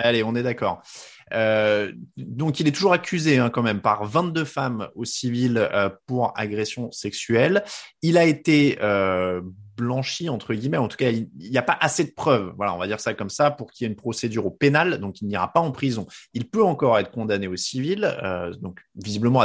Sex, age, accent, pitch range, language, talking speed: male, 20-39, French, 105-145 Hz, French, 215 wpm